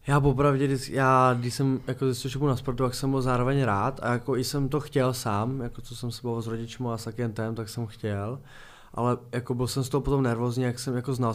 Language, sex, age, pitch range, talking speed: Czech, male, 20-39, 110-125 Hz, 245 wpm